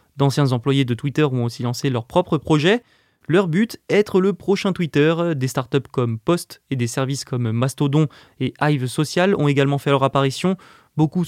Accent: French